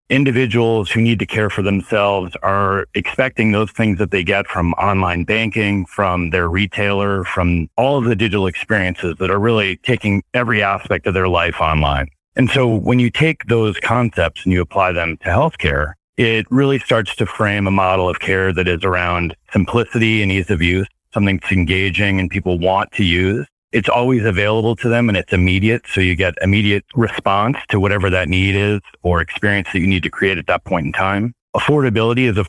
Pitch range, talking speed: 90-110 Hz, 200 wpm